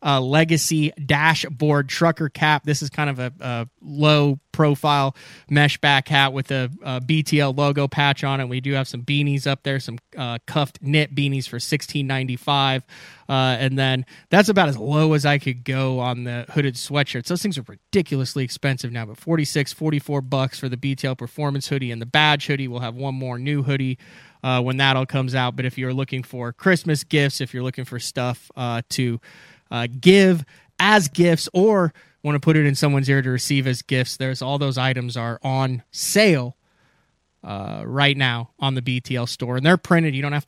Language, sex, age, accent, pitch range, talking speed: English, male, 20-39, American, 125-145 Hz, 195 wpm